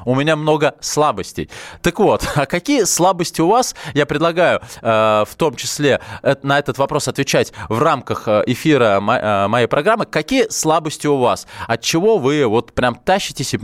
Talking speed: 165 wpm